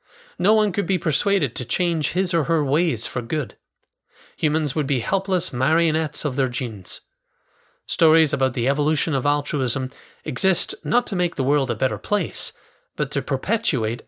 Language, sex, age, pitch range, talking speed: English, male, 30-49, 130-175 Hz, 165 wpm